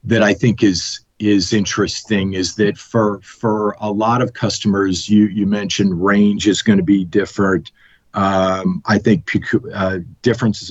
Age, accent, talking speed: 50-69, American, 155 wpm